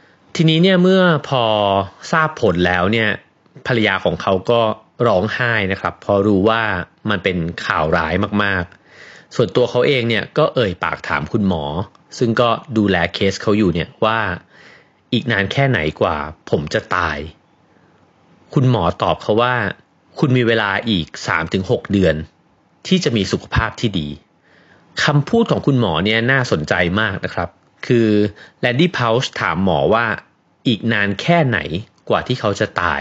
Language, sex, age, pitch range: Thai, male, 30-49, 95-125 Hz